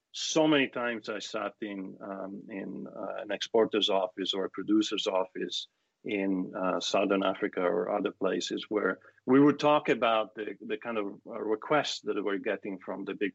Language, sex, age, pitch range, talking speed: Danish, male, 40-59, 100-140 Hz, 175 wpm